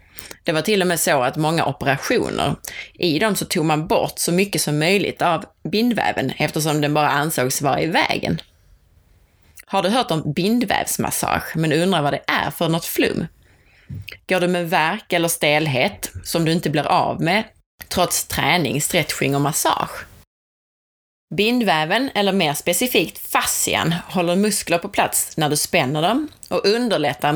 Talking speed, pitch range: 160 wpm, 140-195 Hz